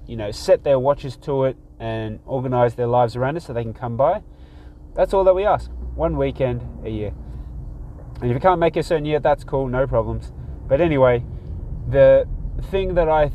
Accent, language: Australian, English